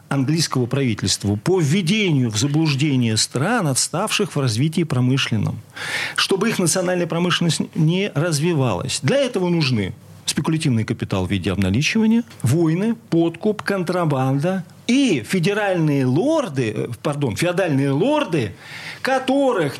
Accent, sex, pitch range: native, male, 120-180 Hz